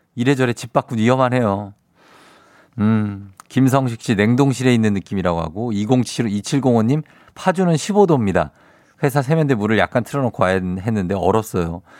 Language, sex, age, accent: Korean, male, 50-69, native